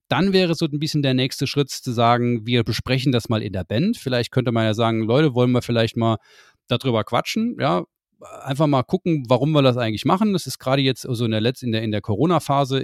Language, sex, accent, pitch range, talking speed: German, male, German, 110-150 Hz, 240 wpm